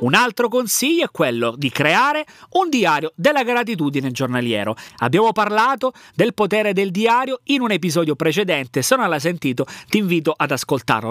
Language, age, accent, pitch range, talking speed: Italian, 30-49, native, 150-225 Hz, 160 wpm